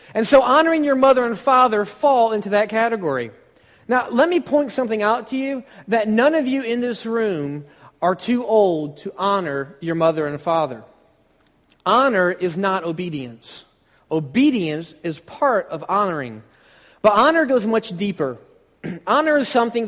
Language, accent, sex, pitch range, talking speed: English, American, male, 185-240 Hz, 155 wpm